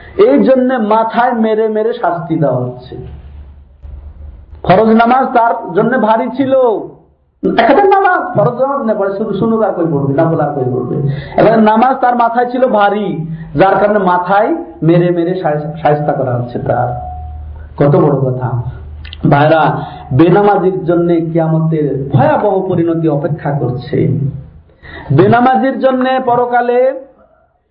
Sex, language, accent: male, Bengali, native